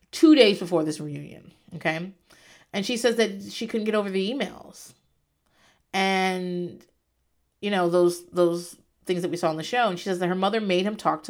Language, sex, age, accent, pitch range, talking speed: English, female, 30-49, American, 155-210 Hz, 200 wpm